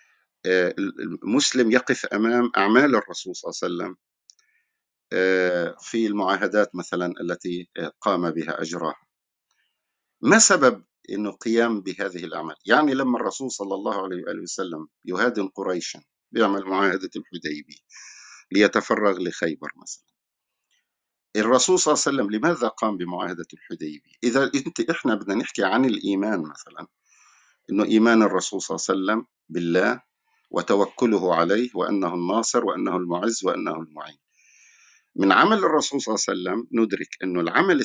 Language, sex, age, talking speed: Arabic, male, 50-69, 125 wpm